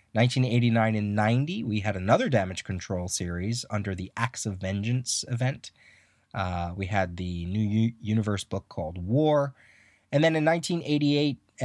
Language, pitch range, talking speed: English, 95-125 Hz, 145 wpm